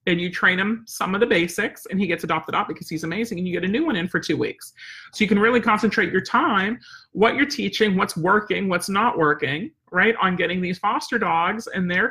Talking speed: 245 wpm